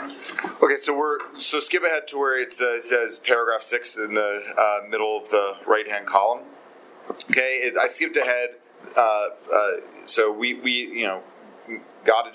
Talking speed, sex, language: 170 wpm, male, English